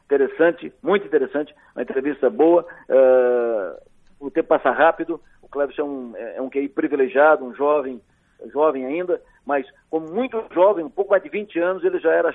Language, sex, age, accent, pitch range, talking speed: Portuguese, male, 50-69, Brazilian, 140-175 Hz, 180 wpm